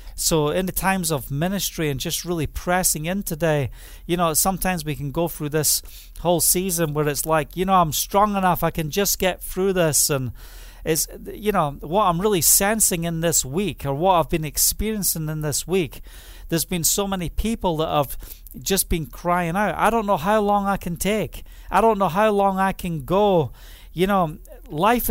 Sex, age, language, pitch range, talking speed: male, 40-59, English, 155-200 Hz, 205 wpm